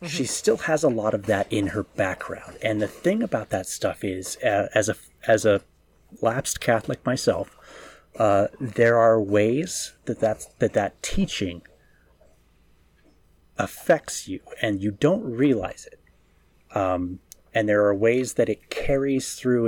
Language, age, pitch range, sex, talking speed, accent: English, 30-49, 90-115 Hz, male, 150 wpm, American